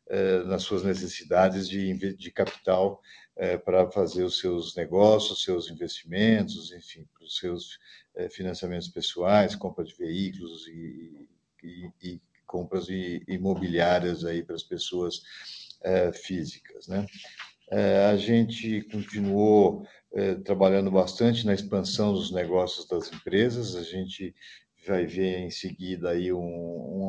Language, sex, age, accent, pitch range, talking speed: Portuguese, male, 50-69, Brazilian, 90-105 Hz, 120 wpm